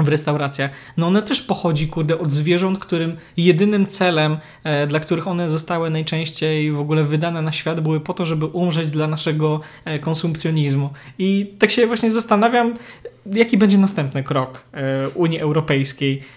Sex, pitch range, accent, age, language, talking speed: male, 150-175 Hz, native, 20-39, Polish, 150 wpm